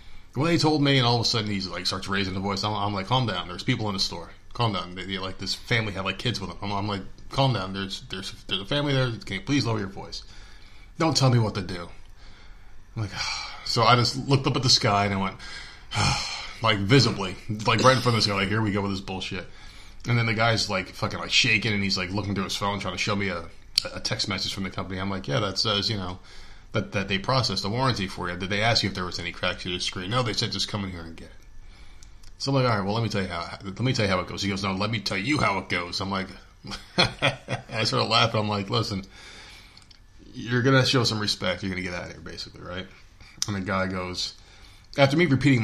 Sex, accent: male, American